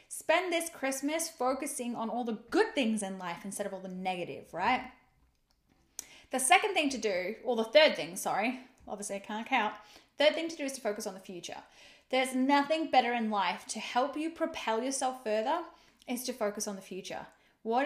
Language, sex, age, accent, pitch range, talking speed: English, female, 10-29, Australian, 230-315 Hz, 200 wpm